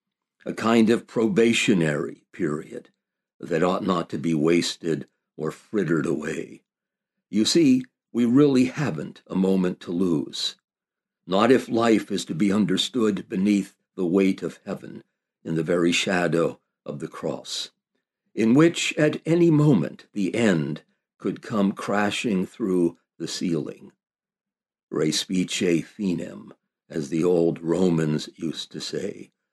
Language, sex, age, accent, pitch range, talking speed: English, male, 60-79, American, 90-135 Hz, 130 wpm